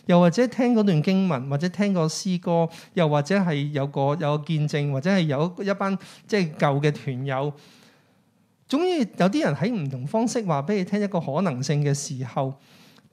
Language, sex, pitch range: Chinese, male, 140-195 Hz